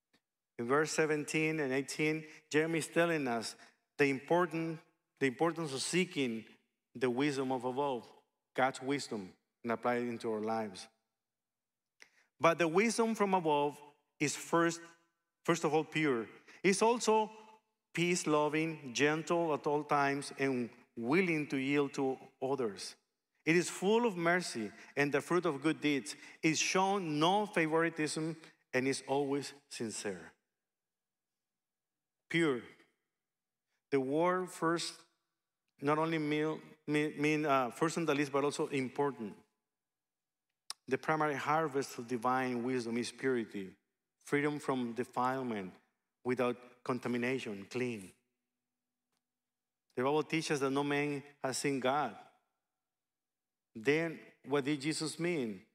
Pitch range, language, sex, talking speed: 130-165 Hz, English, male, 120 wpm